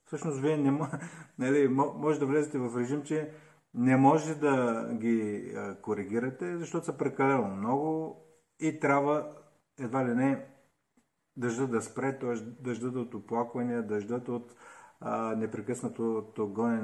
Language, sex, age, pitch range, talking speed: Bulgarian, male, 50-69, 115-150 Hz, 130 wpm